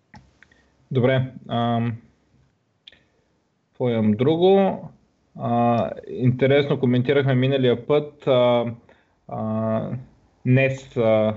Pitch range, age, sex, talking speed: 110-135 Hz, 20-39, male, 70 wpm